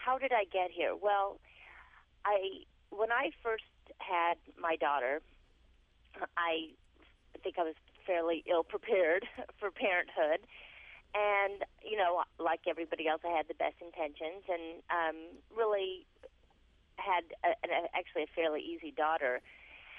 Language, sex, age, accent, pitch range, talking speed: English, female, 40-59, American, 150-200 Hz, 130 wpm